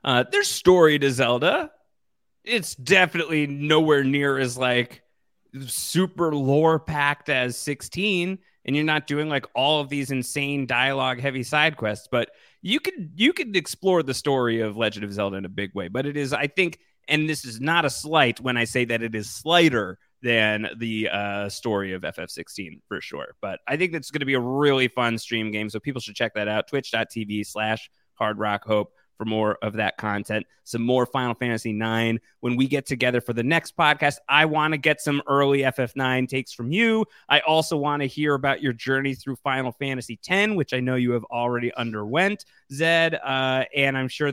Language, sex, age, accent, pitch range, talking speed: English, male, 30-49, American, 115-155 Hz, 195 wpm